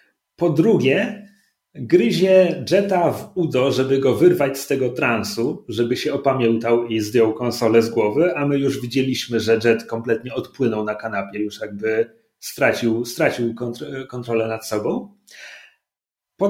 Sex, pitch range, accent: male, 140-200 Hz, native